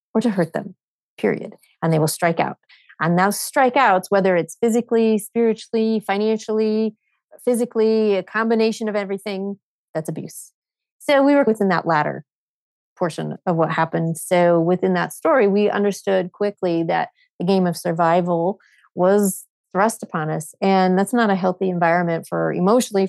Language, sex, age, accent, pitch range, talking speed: English, female, 30-49, American, 180-230 Hz, 155 wpm